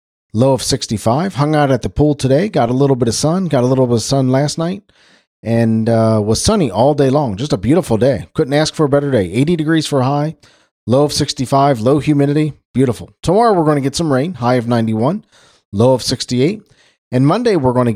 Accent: American